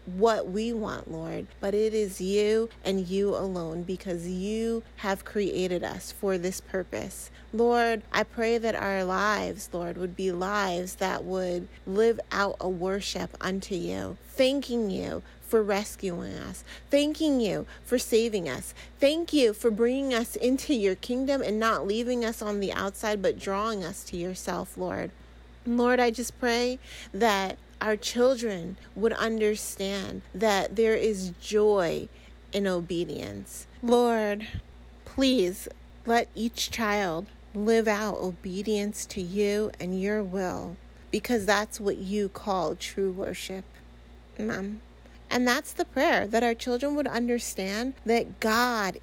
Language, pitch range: English, 190-235 Hz